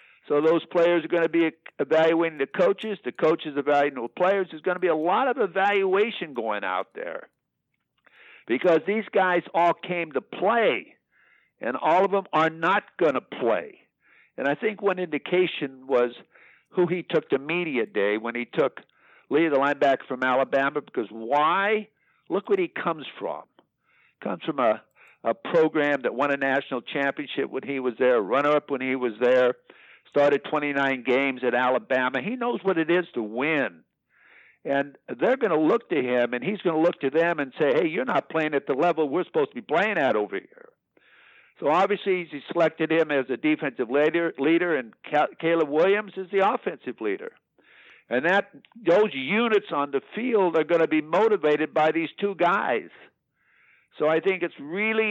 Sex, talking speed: male, 185 wpm